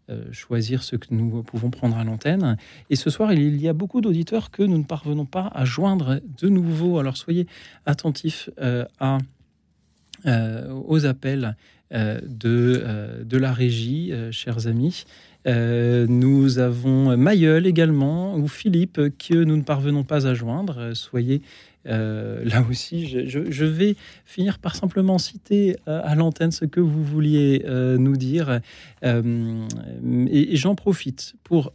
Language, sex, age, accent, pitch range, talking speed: French, male, 40-59, French, 120-160 Hz, 160 wpm